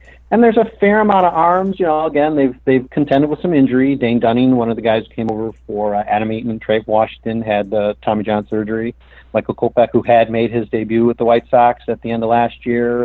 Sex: male